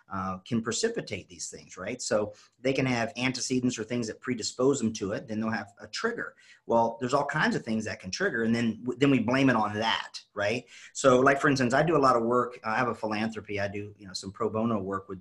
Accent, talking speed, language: American, 255 wpm, English